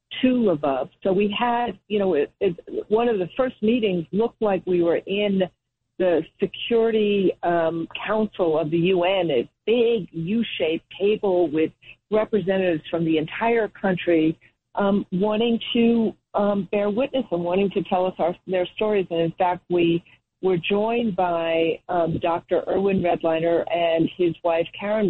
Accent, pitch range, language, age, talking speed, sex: American, 165-210 Hz, English, 50-69, 155 wpm, female